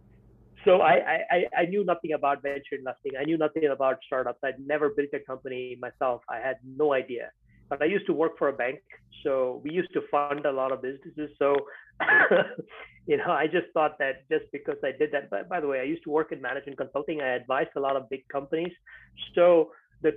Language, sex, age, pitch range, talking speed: English, male, 30-49, 140-195 Hz, 215 wpm